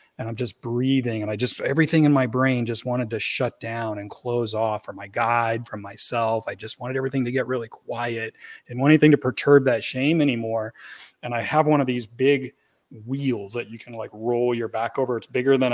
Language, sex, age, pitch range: English, male, 30-49, 115-135 Hz